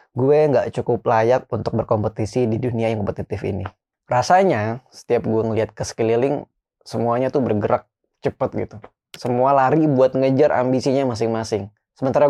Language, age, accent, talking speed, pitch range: Indonesian, 20-39, native, 140 wpm, 115-150 Hz